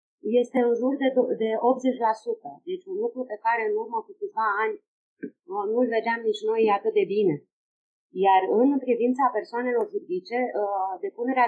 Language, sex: Romanian, female